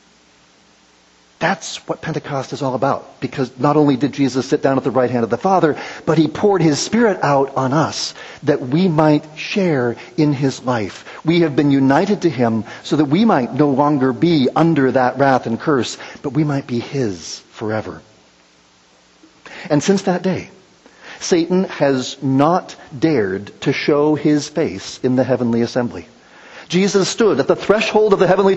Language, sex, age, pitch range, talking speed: English, male, 50-69, 125-185 Hz, 175 wpm